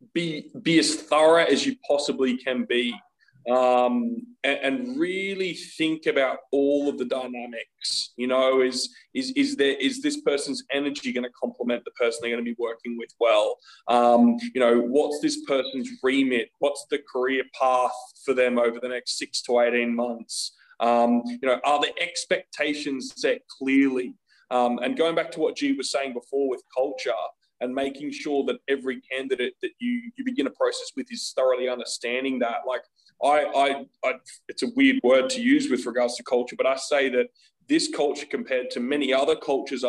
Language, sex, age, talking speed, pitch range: English, male, 20-39, 185 wpm, 125-175 Hz